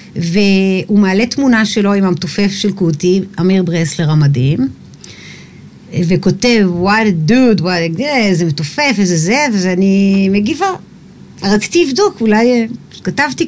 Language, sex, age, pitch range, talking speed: Hebrew, female, 50-69, 175-230 Hz, 110 wpm